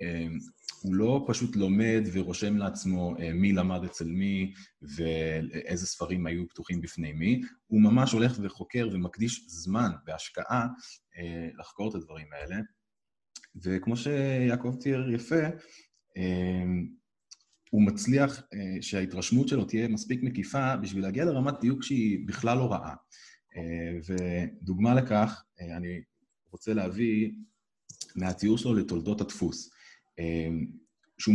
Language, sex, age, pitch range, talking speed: Hebrew, male, 20-39, 90-125 Hz, 105 wpm